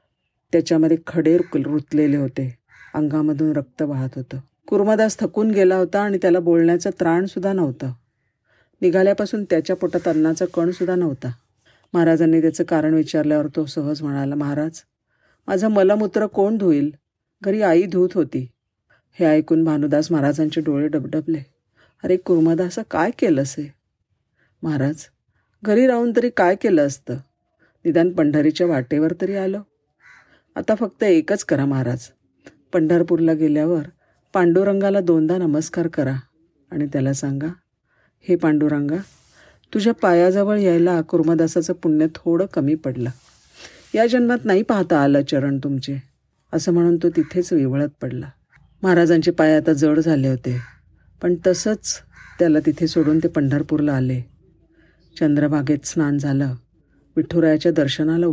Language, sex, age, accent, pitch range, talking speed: Marathi, female, 50-69, native, 145-180 Hz, 125 wpm